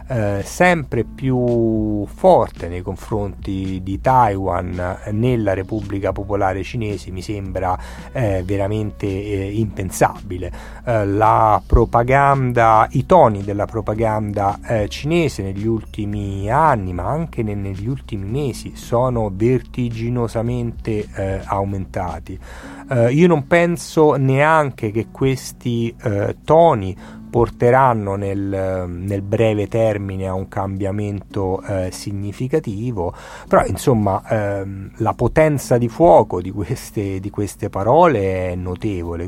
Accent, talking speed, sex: native, 95 wpm, male